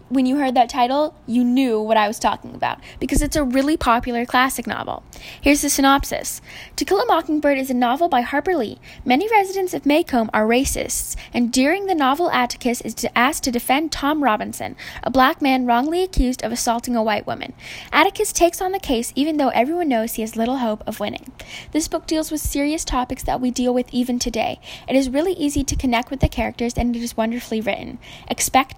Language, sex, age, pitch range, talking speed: English, female, 10-29, 245-315 Hz, 210 wpm